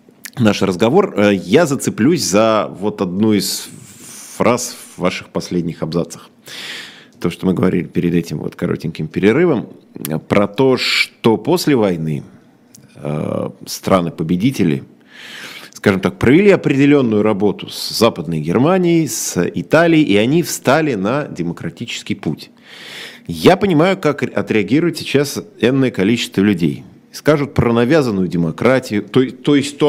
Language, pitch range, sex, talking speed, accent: Russian, 90-140 Hz, male, 120 wpm, native